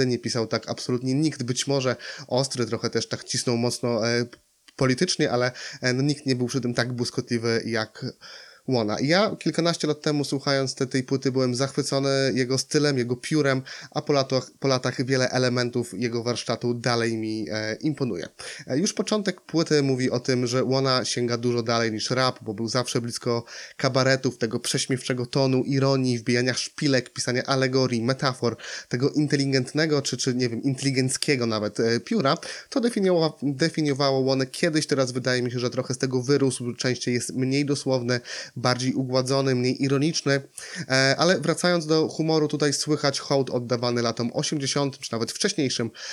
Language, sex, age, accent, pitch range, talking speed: Polish, male, 20-39, native, 120-140 Hz, 165 wpm